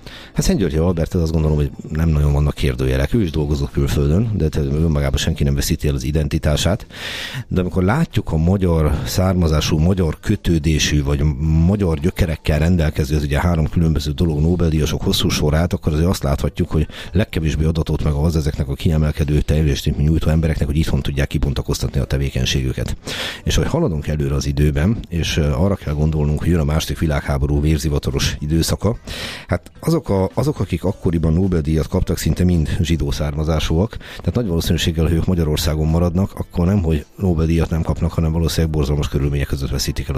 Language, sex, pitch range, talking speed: Hungarian, male, 75-85 Hz, 165 wpm